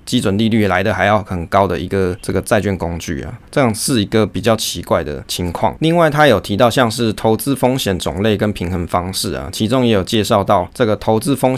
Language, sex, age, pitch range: Chinese, male, 20-39, 95-115 Hz